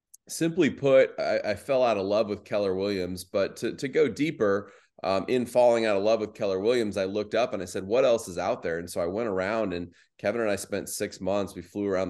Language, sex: English, male